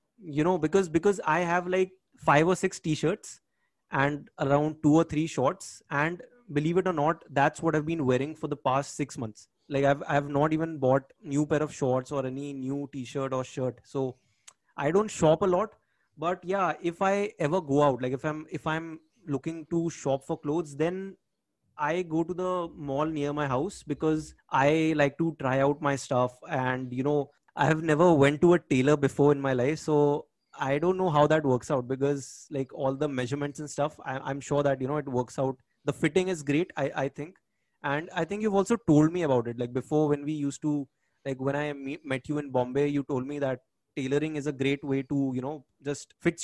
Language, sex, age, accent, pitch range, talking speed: English, male, 20-39, Indian, 135-165 Hz, 215 wpm